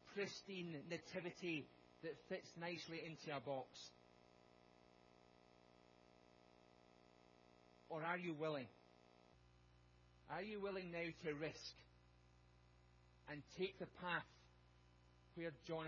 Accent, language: British, English